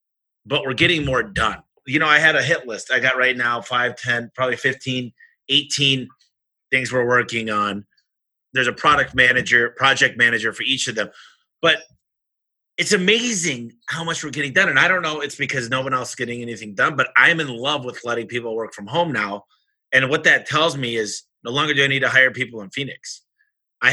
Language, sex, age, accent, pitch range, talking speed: English, male, 30-49, American, 120-150 Hz, 215 wpm